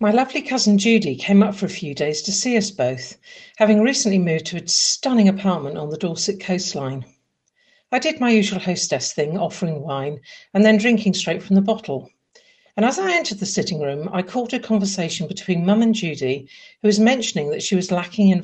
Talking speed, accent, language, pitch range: 205 wpm, British, English, 170-220 Hz